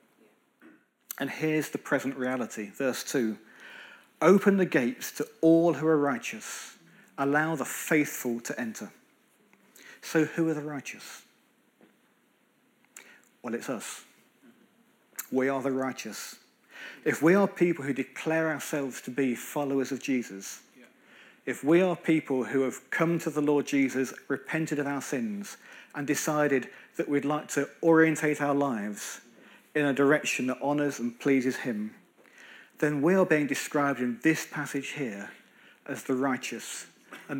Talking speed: 145 wpm